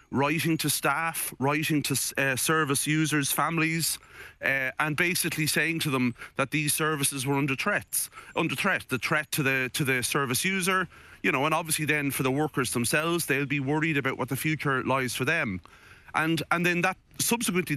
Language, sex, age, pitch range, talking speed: English, male, 30-49, 130-165 Hz, 185 wpm